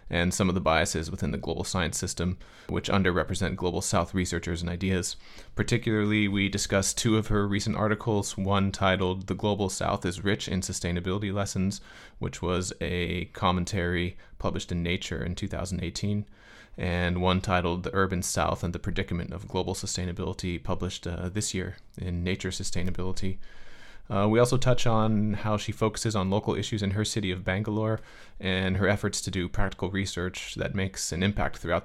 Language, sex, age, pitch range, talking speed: English, male, 30-49, 90-105 Hz, 170 wpm